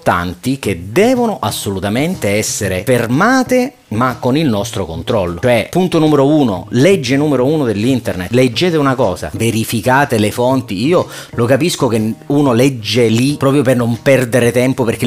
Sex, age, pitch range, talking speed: male, 30-49, 105-130 Hz, 150 wpm